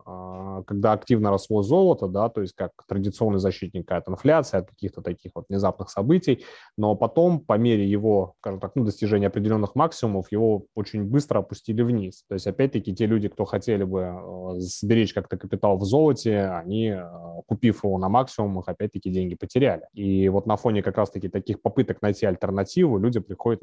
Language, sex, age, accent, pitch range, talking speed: Russian, male, 20-39, native, 95-110 Hz, 170 wpm